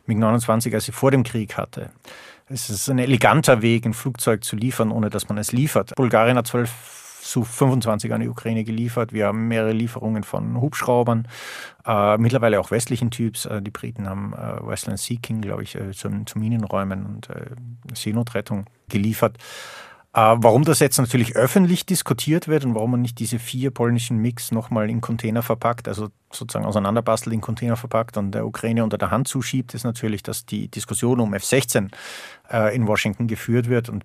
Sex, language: male, German